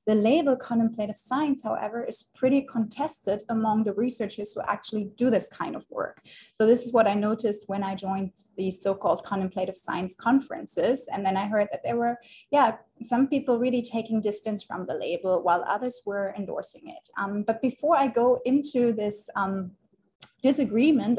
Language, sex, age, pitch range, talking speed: English, female, 20-39, 195-245 Hz, 180 wpm